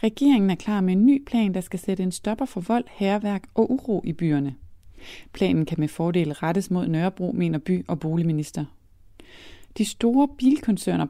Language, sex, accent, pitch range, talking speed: Danish, female, native, 165-220 Hz, 180 wpm